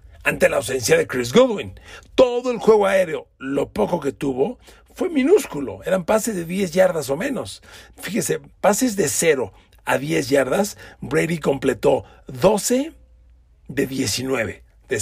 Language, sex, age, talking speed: Spanish, male, 50-69, 145 wpm